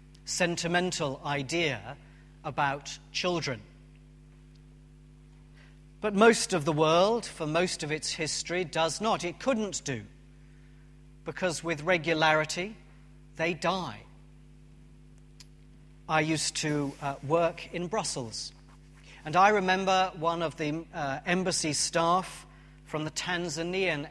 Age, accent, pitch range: 40-59, British, 145-170 Hz